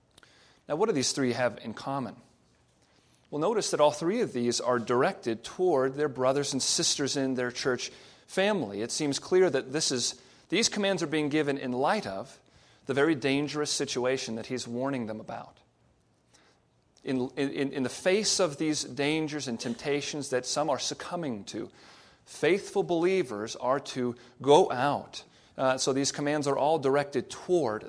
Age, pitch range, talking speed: 40-59, 125-150 Hz, 170 wpm